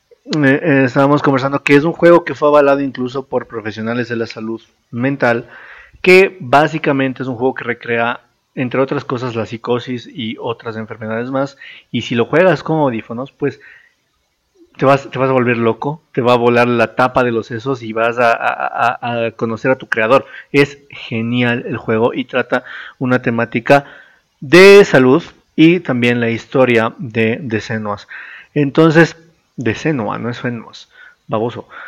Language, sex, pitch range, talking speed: Spanish, male, 120-165 Hz, 170 wpm